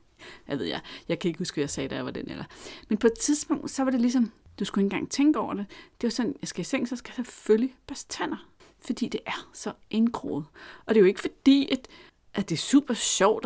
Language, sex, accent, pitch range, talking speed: Danish, female, native, 175-235 Hz, 270 wpm